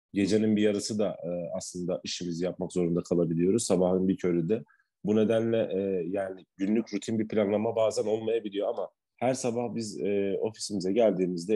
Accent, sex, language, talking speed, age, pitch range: native, male, Turkish, 160 wpm, 40-59, 95-115 Hz